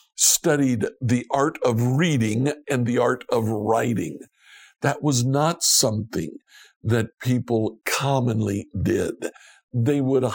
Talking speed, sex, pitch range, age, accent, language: 115 wpm, male, 115-150 Hz, 60-79, American, English